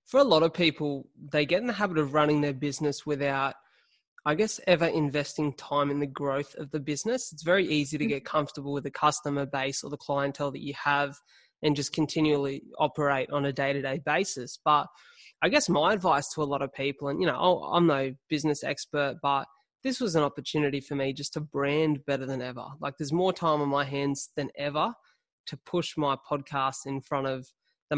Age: 20-39